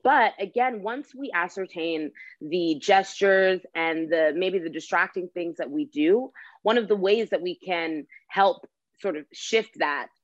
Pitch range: 160-210 Hz